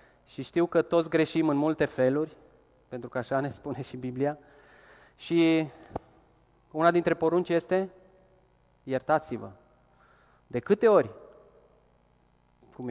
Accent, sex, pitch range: native, male, 125-160 Hz